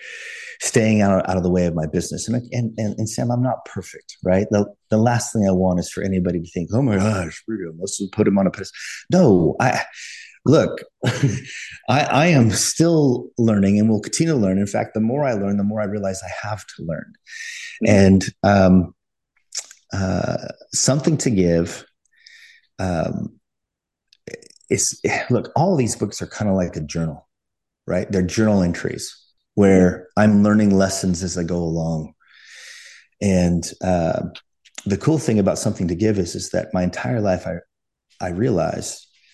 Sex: male